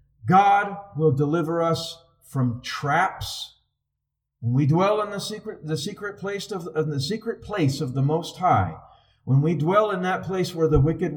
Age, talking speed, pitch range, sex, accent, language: 50-69, 175 wpm, 125-165 Hz, male, American, English